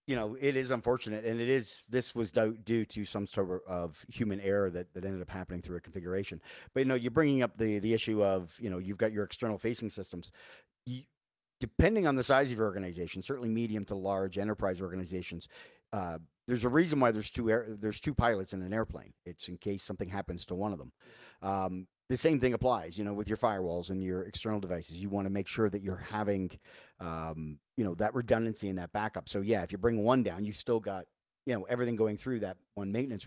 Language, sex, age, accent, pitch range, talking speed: English, male, 40-59, American, 95-120 Hz, 225 wpm